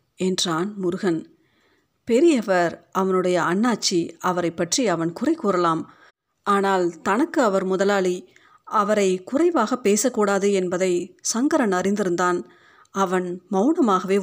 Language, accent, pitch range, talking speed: Tamil, native, 175-245 Hz, 95 wpm